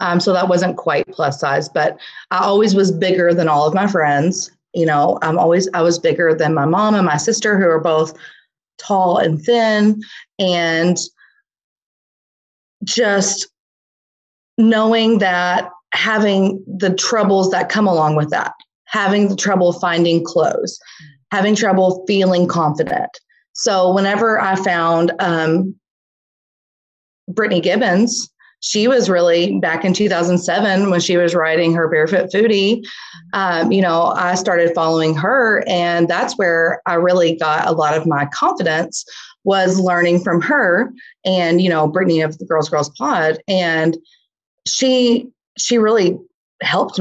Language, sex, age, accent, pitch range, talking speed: English, female, 30-49, American, 170-200 Hz, 145 wpm